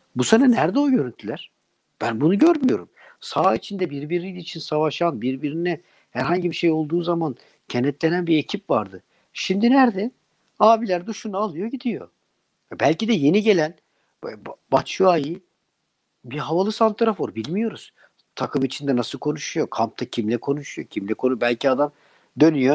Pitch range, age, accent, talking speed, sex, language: 125-175 Hz, 60-79, native, 135 wpm, male, Turkish